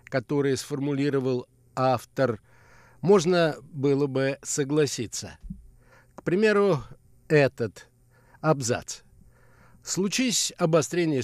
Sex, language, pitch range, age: male, Russian, 125-155 Hz, 60-79